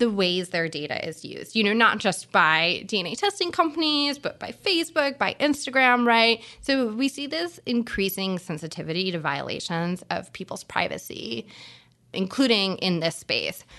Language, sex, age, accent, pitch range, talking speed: English, female, 20-39, American, 180-245 Hz, 150 wpm